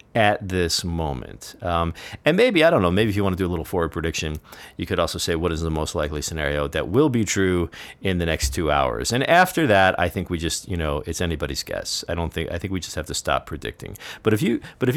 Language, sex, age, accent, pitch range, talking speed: English, male, 40-59, American, 80-100 Hz, 265 wpm